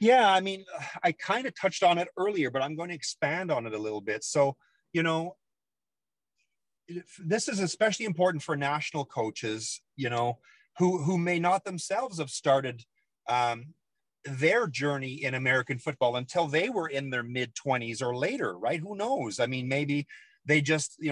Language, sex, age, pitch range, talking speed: English, male, 40-59, 125-165 Hz, 175 wpm